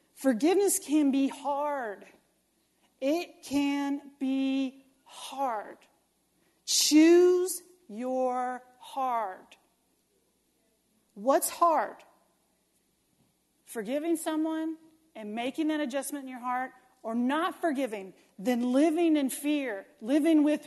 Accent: American